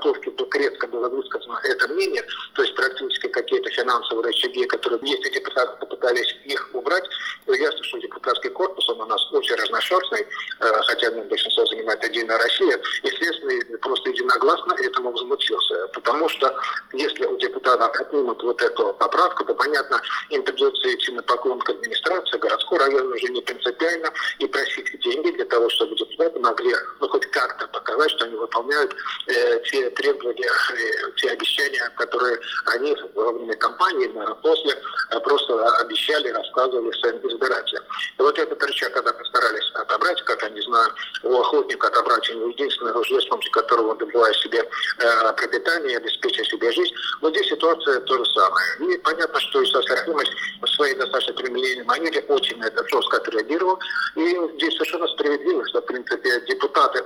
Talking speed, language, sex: 145 wpm, Russian, male